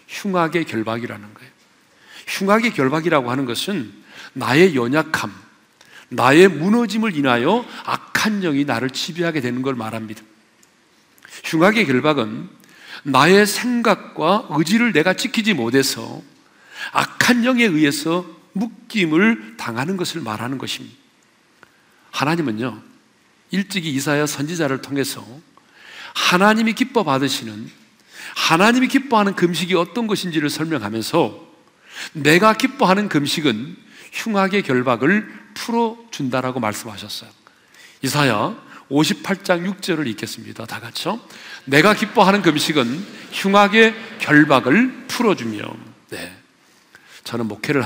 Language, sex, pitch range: Korean, male, 135-215 Hz